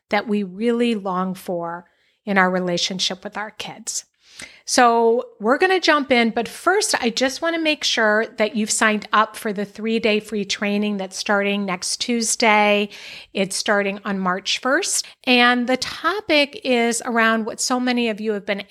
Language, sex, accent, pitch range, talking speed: English, female, American, 200-235 Hz, 170 wpm